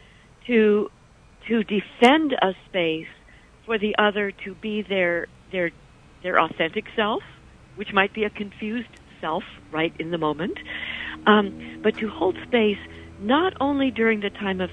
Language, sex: English, female